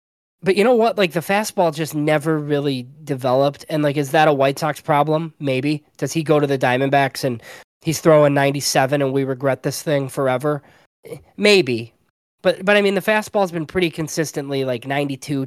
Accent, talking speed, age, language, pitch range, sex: American, 185 wpm, 20-39, English, 140-170 Hz, male